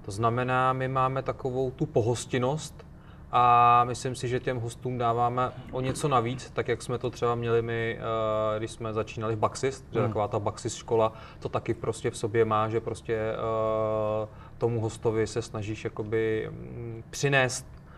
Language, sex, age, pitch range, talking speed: Czech, male, 20-39, 115-130 Hz, 155 wpm